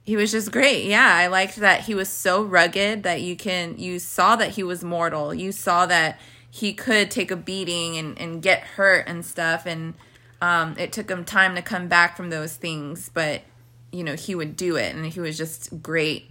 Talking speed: 215 wpm